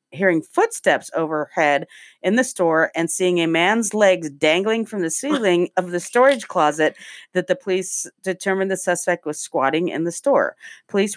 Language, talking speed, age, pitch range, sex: English, 165 wpm, 40-59, 160-195 Hz, female